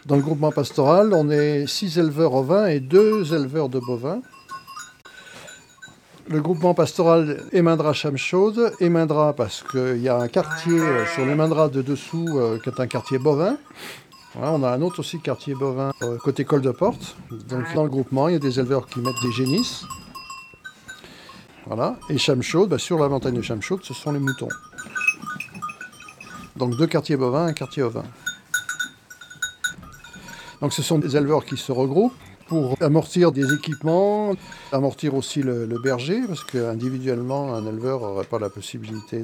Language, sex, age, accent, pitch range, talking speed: French, male, 60-79, French, 130-175 Hz, 165 wpm